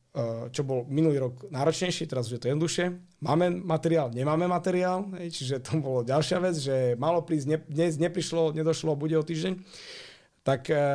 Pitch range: 130-165 Hz